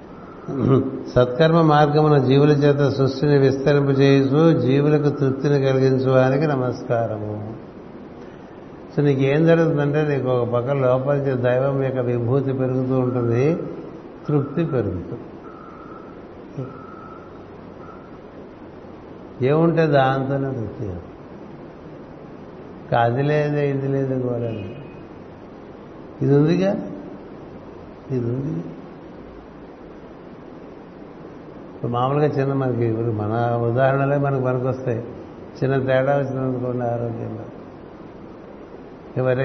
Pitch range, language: 125-145 Hz, Telugu